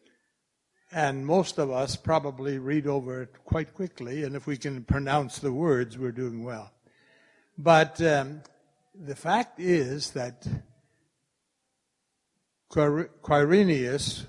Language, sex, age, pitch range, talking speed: English, male, 60-79, 140-180 Hz, 115 wpm